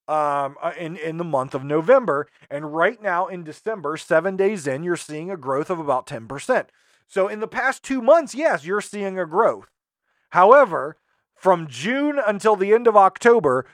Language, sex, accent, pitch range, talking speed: English, male, American, 145-200 Hz, 180 wpm